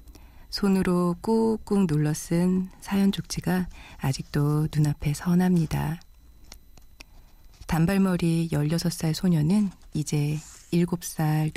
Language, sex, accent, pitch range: Korean, female, native, 150-180 Hz